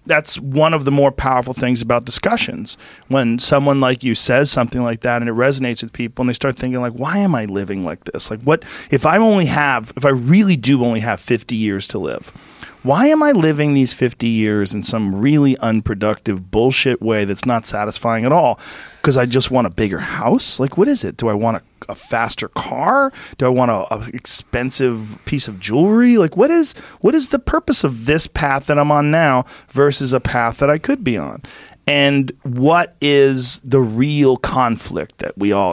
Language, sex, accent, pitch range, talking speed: English, male, American, 120-145 Hz, 210 wpm